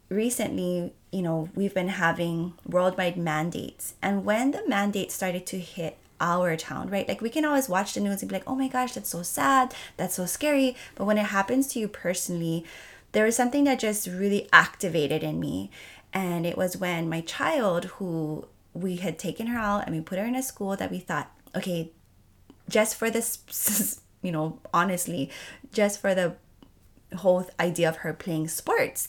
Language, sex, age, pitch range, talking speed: English, female, 20-39, 170-215 Hz, 190 wpm